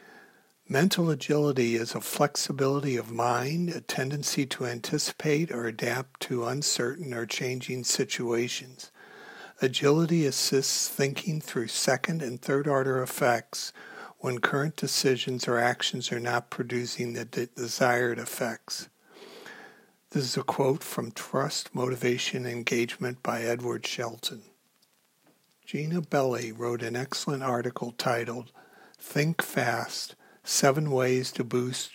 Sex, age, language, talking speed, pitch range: male, 60-79, English, 115 wpm, 120-145 Hz